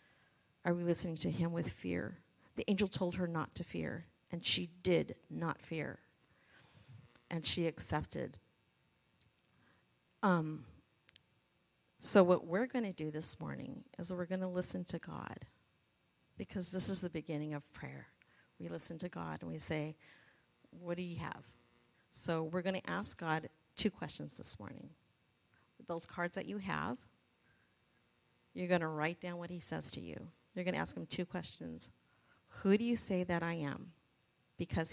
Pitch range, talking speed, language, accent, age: 150-180 Hz, 165 wpm, English, American, 40-59